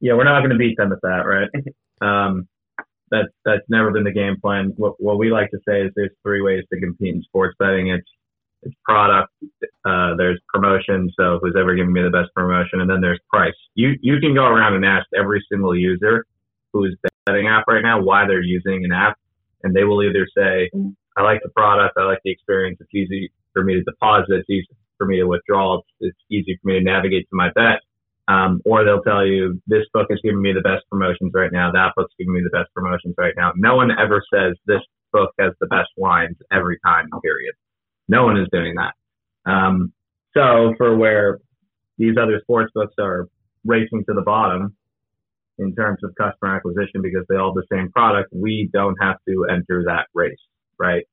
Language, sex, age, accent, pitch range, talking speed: English, male, 30-49, American, 95-110 Hz, 210 wpm